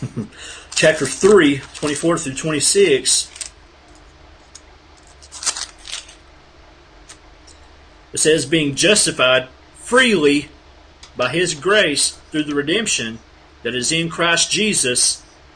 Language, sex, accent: English, male, American